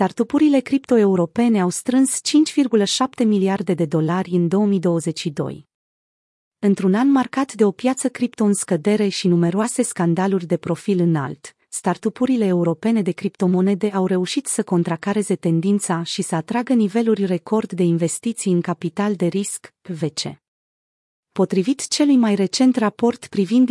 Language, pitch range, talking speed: Romanian, 180-230 Hz, 130 wpm